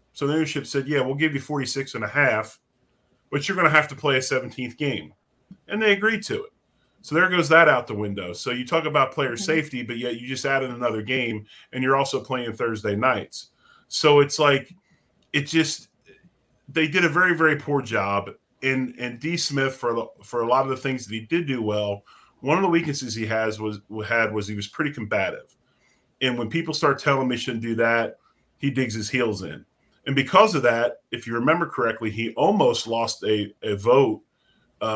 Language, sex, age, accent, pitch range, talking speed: English, male, 30-49, American, 110-140 Hz, 215 wpm